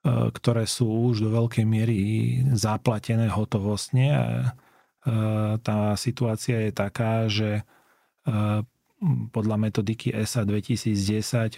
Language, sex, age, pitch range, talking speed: Slovak, male, 30-49, 105-115 Hz, 95 wpm